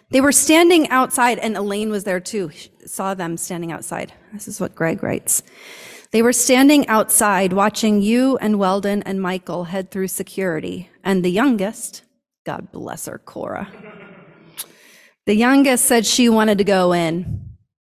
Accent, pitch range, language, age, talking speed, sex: American, 185-230 Hz, English, 30-49, 155 wpm, female